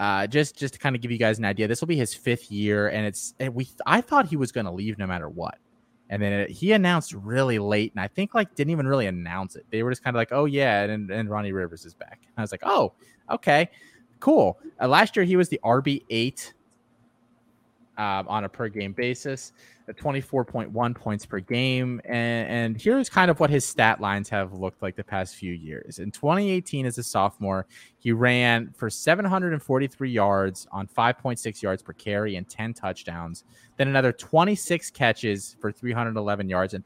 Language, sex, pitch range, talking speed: English, male, 100-135 Hz, 210 wpm